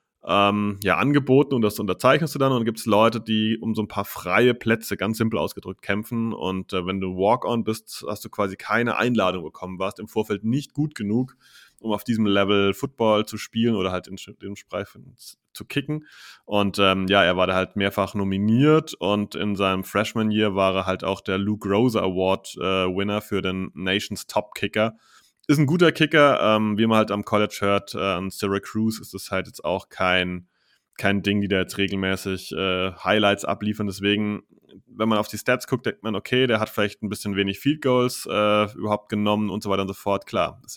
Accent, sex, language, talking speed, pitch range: German, male, German, 200 wpm, 95-110 Hz